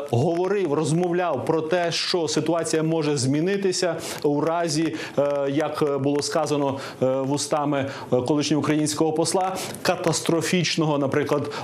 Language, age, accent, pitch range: Ukrainian, 30-49, native, 145-175 Hz